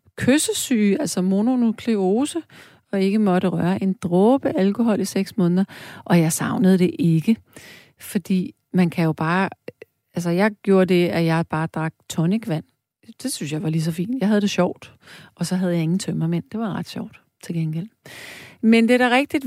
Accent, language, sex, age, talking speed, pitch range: native, Danish, female, 30-49, 185 wpm, 170-220 Hz